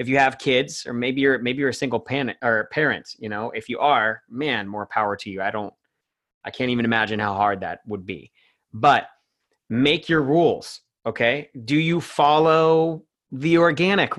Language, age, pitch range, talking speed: English, 30-49, 125-165 Hz, 190 wpm